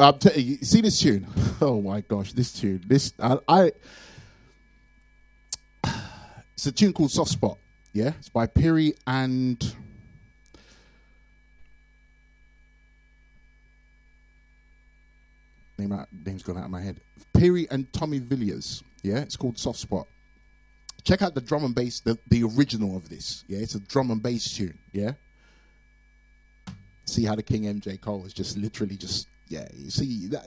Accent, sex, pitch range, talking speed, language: British, male, 105-145 Hz, 140 wpm, English